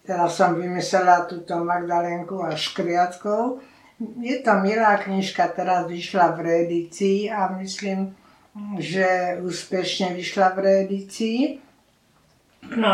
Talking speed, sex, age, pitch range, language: 105 wpm, female, 50-69, 175-200 Hz, Slovak